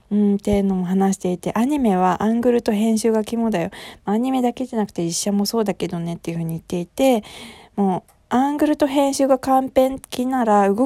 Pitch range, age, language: 175-225 Hz, 20-39, Japanese